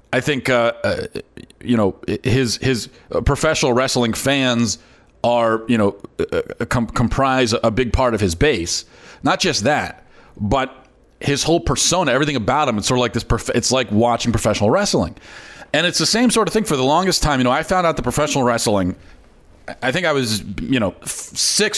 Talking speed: 195 wpm